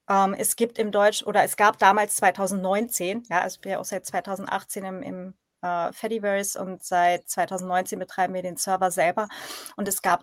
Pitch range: 190-235 Hz